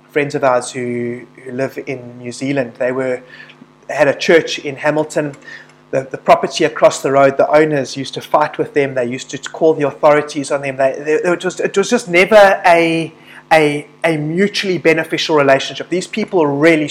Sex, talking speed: male, 195 wpm